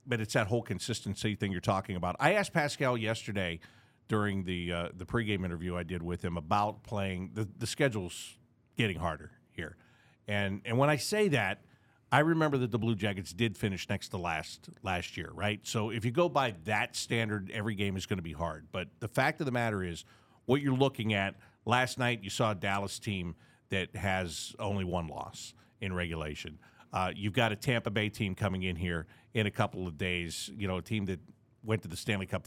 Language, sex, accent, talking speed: English, male, American, 220 wpm